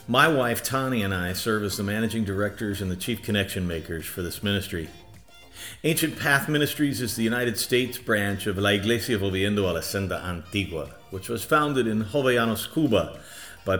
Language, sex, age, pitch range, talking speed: English, male, 50-69, 95-125 Hz, 180 wpm